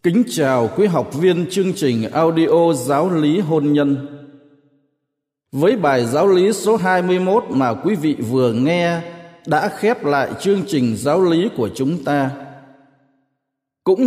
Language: Vietnamese